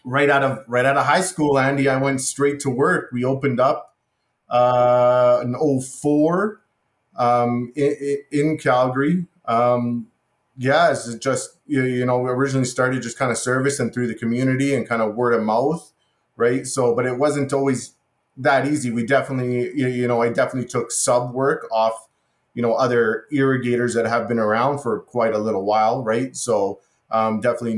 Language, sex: English, male